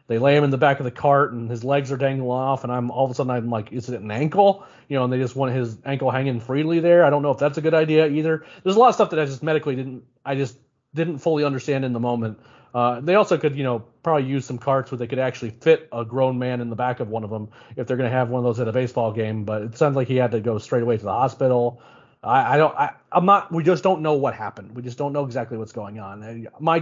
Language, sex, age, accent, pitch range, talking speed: English, male, 30-49, American, 120-150 Hz, 305 wpm